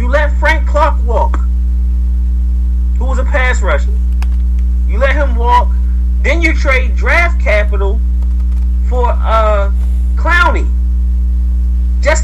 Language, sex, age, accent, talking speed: English, male, 40-59, American, 115 wpm